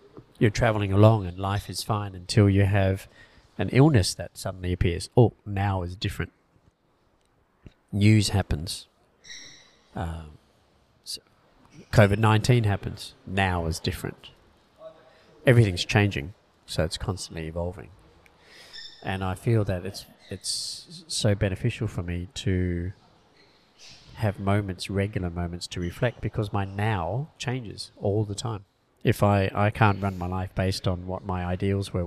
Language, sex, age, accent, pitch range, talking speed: English, male, 40-59, Australian, 90-110 Hz, 130 wpm